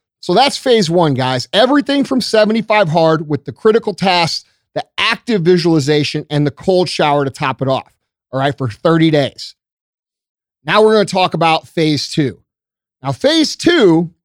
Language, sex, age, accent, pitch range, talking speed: English, male, 40-59, American, 145-195 Hz, 170 wpm